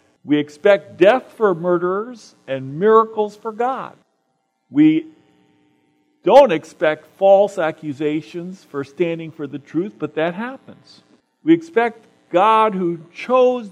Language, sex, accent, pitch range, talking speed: English, male, American, 135-220 Hz, 120 wpm